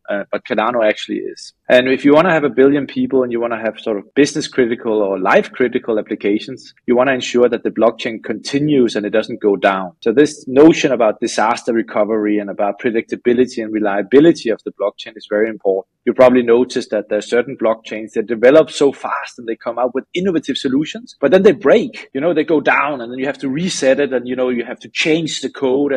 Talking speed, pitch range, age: 235 wpm, 115-155 Hz, 30-49